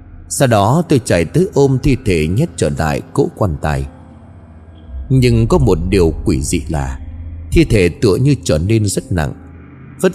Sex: male